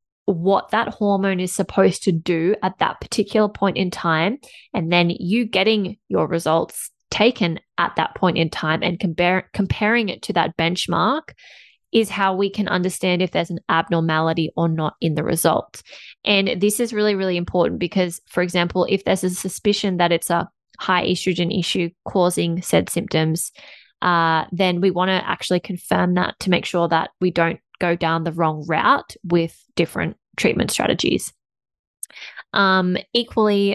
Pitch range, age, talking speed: 170-195 Hz, 20-39, 165 wpm